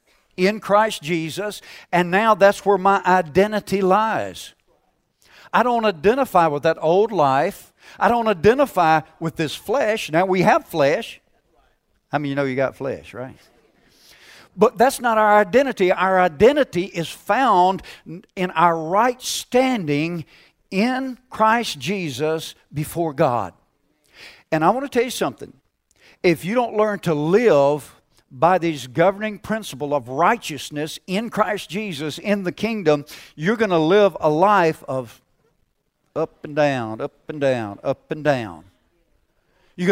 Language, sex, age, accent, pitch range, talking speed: English, male, 60-79, American, 150-200 Hz, 145 wpm